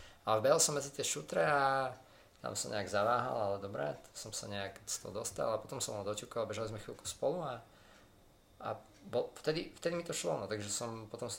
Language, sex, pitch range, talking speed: Slovak, male, 105-130 Hz, 220 wpm